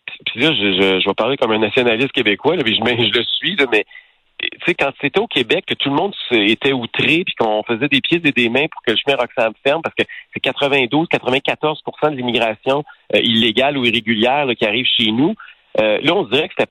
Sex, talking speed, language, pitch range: male, 250 wpm, French, 115-150 Hz